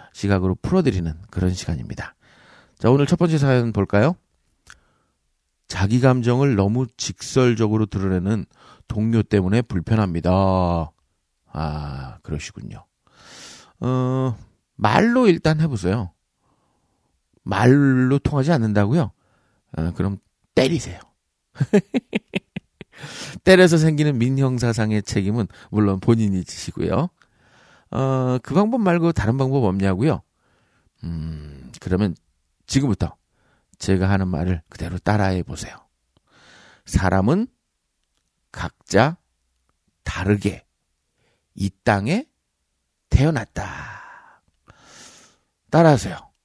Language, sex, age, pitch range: Korean, male, 40-59, 90-130 Hz